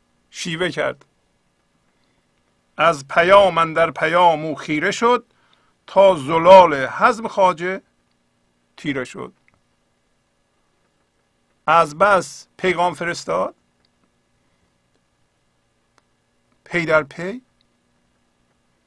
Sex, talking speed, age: male, 70 wpm, 50-69